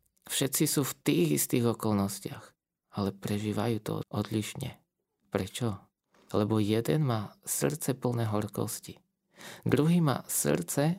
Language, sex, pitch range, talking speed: Slovak, male, 110-150 Hz, 110 wpm